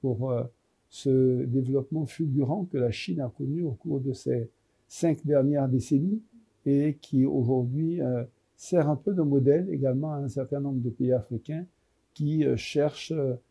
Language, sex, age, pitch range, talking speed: French, male, 60-79, 130-150 Hz, 150 wpm